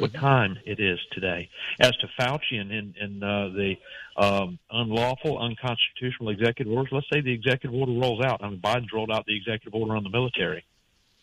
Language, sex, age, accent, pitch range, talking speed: English, male, 40-59, American, 105-125 Hz, 190 wpm